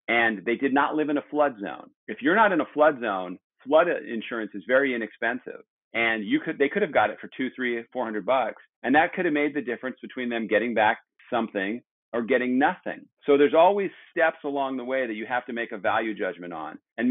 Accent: American